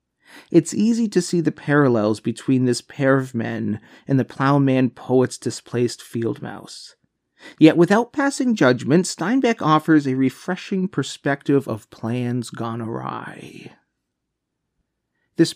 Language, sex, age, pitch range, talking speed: English, male, 30-49, 115-165 Hz, 125 wpm